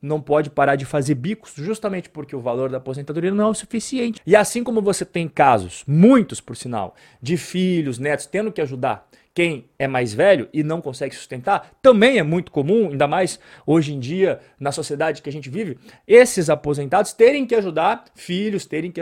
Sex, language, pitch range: male, Portuguese, 140-190 Hz